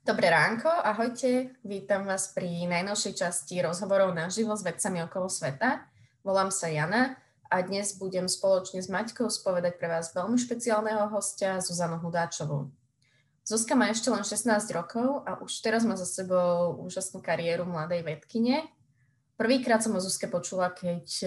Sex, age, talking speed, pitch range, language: female, 20-39, 150 wpm, 170-205 Hz, Slovak